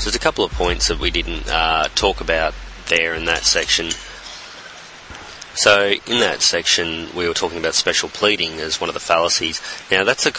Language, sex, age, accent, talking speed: English, male, 30-49, Australian, 185 wpm